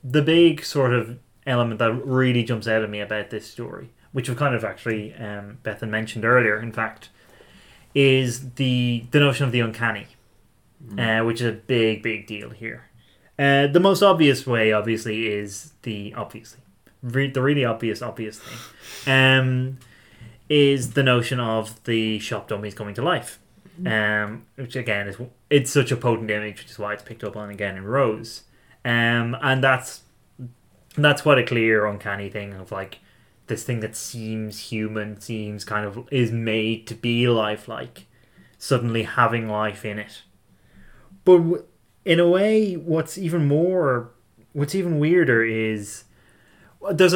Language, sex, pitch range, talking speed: English, male, 110-135 Hz, 160 wpm